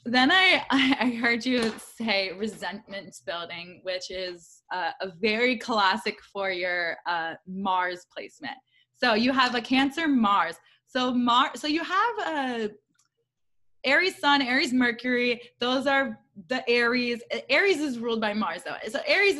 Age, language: 20-39, English